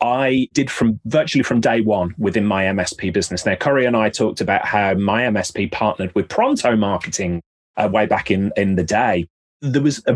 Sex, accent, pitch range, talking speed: male, British, 100-130 Hz, 200 wpm